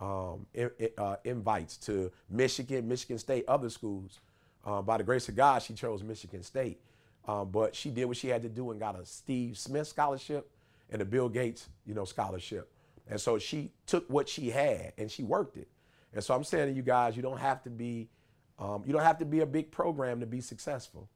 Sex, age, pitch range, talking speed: male, 40-59, 105-130 Hz, 215 wpm